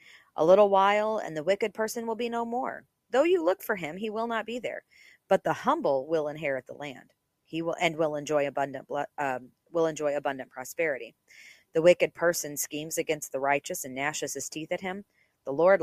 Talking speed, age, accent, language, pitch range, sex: 210 wpm, 40-59, American, English, 145-180 Hz, female